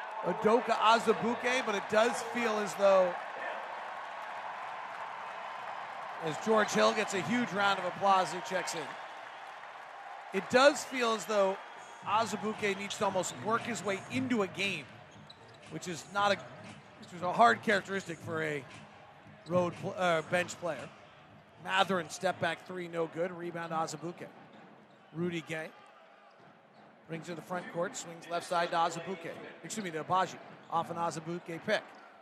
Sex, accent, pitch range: male, American, 170-215 Hz